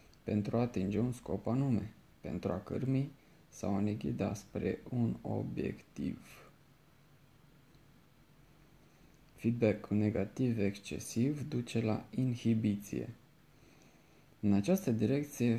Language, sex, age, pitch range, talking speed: Romanian, male, 20-39, 100-125 Hz, 95 wpm